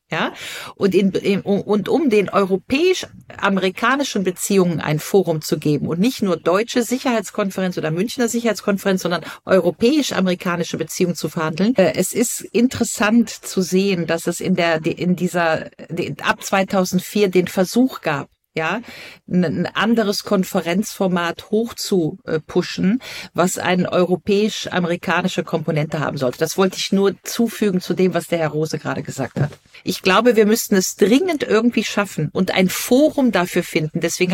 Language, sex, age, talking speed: German, female, 50-69, 140 wpm